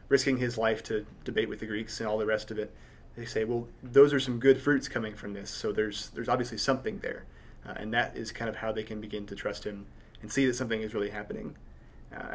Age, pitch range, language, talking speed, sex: 30-49, 110-125 Hz, English, 255 wpm, male